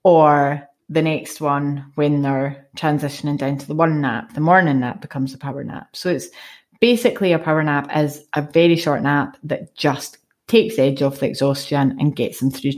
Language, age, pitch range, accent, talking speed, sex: English, 30-49, 145-165 Hz, British, 195 wpm, female